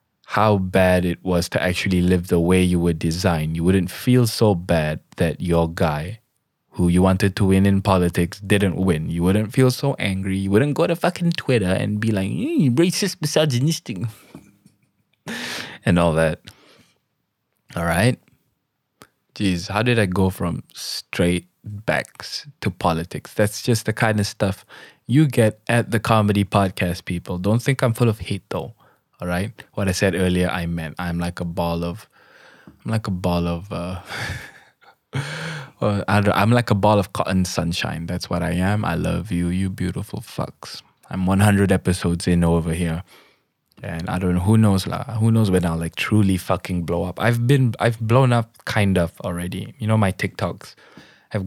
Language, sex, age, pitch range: English, male, 20-39, 85-105 Hz